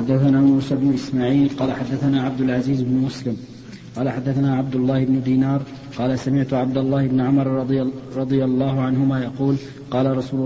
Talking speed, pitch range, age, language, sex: 165 wpm, 130-140 Hz, 40-59, Arabic, male